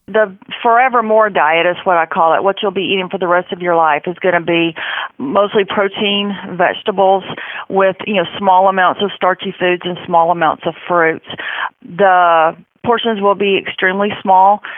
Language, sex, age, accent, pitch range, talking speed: English, female, 40-59, American, 165-195 Hz, 185 wpm